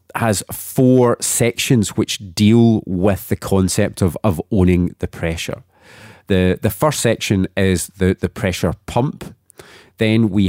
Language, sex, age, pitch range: English, male, 30-49, 90-110 Hz